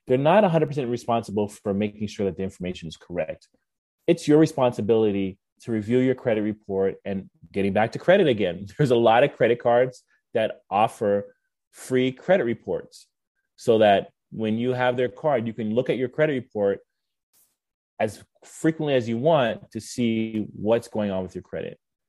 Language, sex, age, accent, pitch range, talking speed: English, male, 30-49, American, 100-130 Hz, 175 wpm